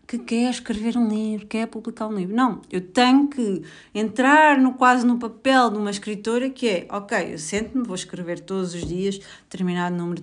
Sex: female